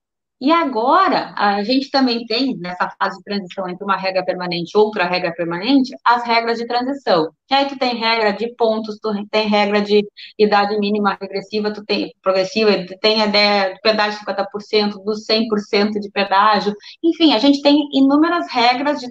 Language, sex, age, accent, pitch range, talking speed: Portuguese, female, 20-39, Brazilian, 205-275 Hz, 180 wpm